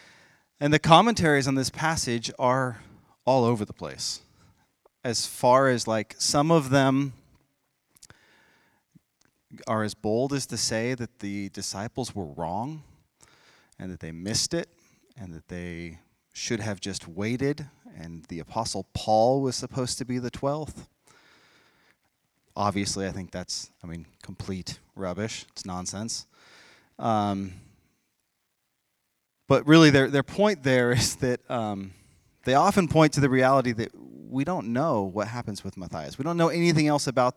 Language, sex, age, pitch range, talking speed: English, male, 30-49, 100-140 Hz, 145 wpm